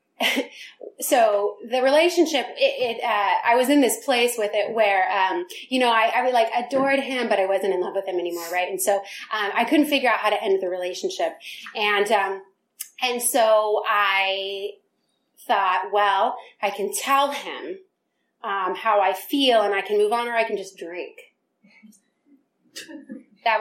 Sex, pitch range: female, 200-255 Hz